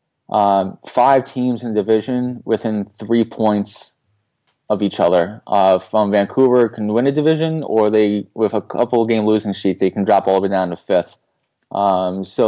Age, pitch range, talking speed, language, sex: 20-39, 95-115 Hz, 180 wpm, English, male